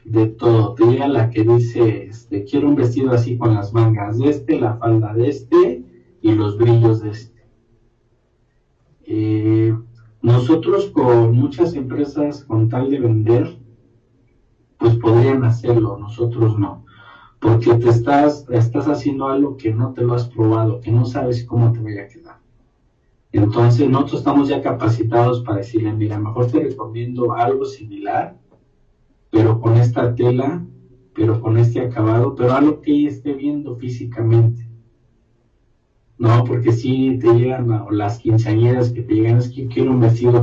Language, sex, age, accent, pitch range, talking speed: Spanish, male, 40-59, Mexican, 110-125 Hz, 155 wpm